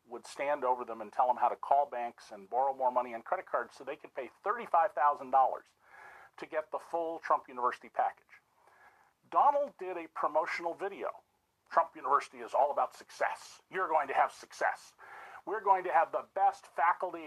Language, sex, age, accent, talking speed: English, male, 50-69, American, 185 wpm